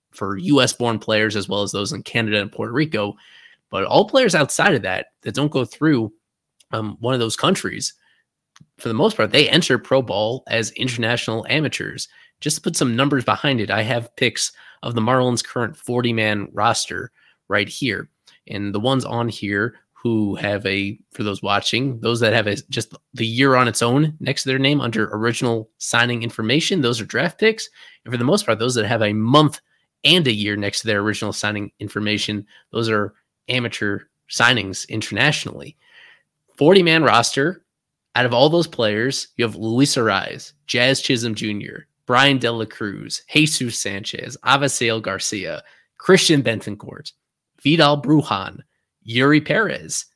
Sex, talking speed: male, 170 wpm